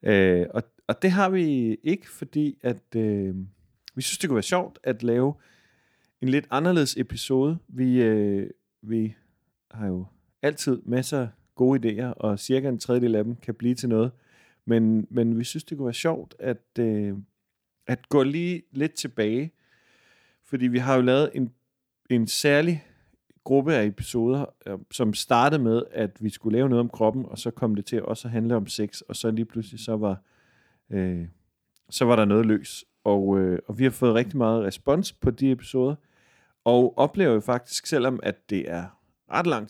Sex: male